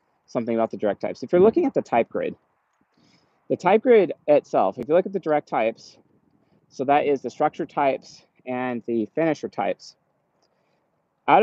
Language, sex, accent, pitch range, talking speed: English, male, American, 135-180 Hz, 180 wpm